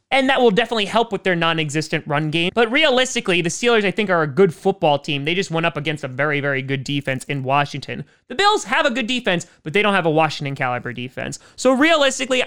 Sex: male